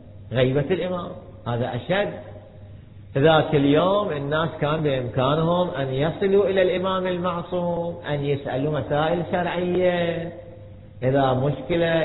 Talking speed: 100 wpm